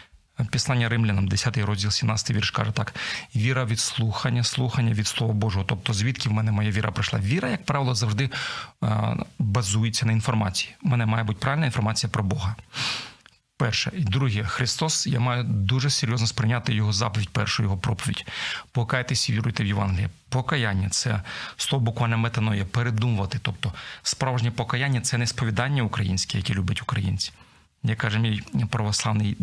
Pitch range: 110-125 Hz